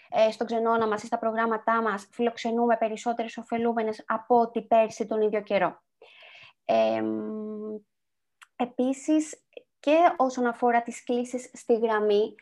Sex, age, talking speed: female, 20-39, 120 wpm